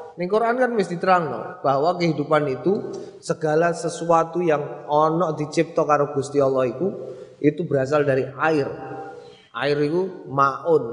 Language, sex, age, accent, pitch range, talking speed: Indonesian, male, 20-39, native, 140-175 Hz, 125 wpm